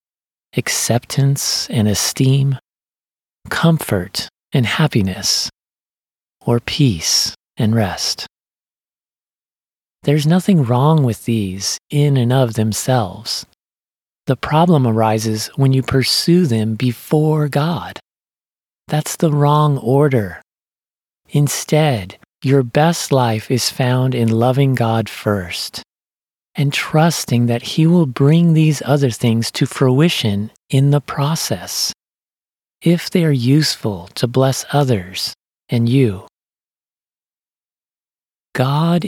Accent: American